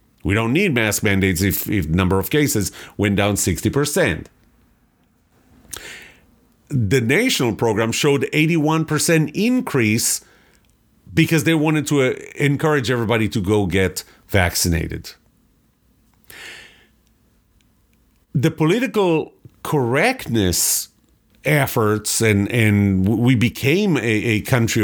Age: 50-69